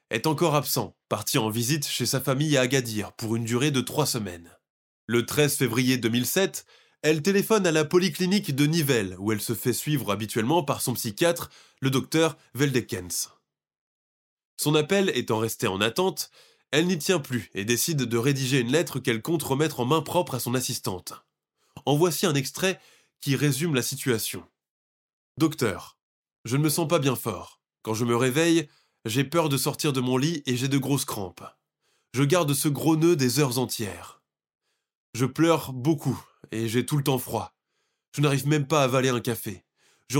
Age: 20-39